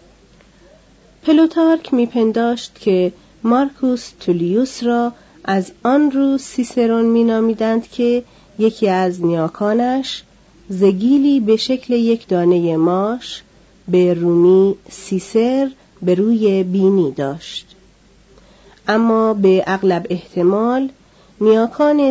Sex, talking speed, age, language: female, 90 wpm, 40-59, Persian